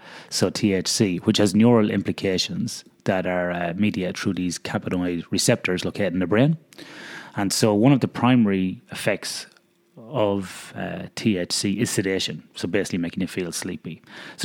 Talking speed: 155 wpm